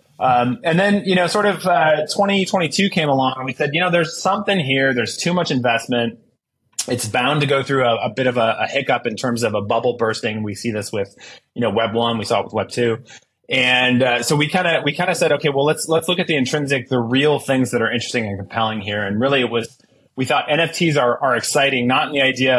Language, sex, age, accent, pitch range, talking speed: English, male, 20-39, American, 115-140 Hz, 250 wpm